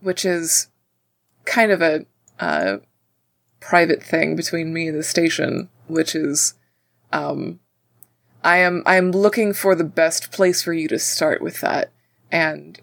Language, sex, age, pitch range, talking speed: English, female, 20-39, 145-195 Hz, 150 wpm